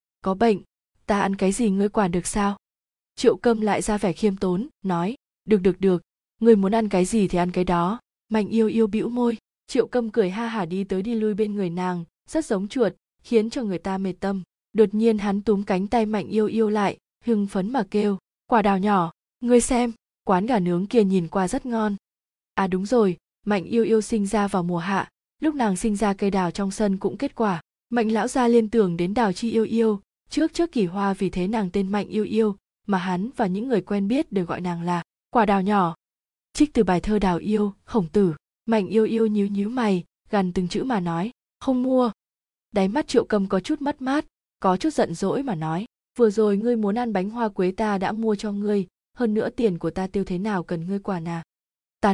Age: 20-39